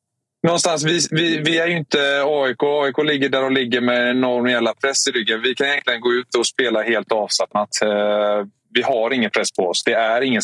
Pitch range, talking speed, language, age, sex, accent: 105-135 Hz, 220 wpm, Swedish, 20-39, male, native